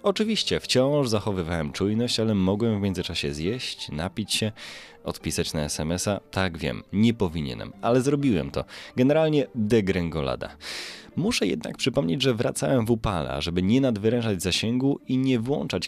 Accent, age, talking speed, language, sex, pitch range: native, 20-39, 140 wpm, Polish, male, 85-130 Hz